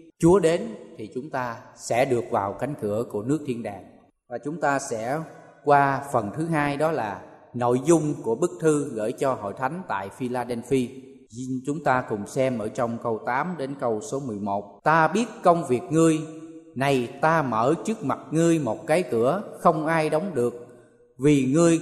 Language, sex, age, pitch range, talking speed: Vietnamese, male, 20-39, 125-160 Hz, 185 wpm